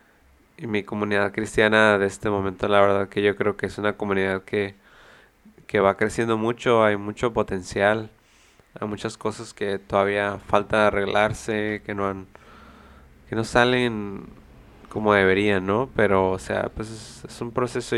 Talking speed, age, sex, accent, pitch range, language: 160 wpm, 20-39, male, Mexican, 100-115 Hz, Spanish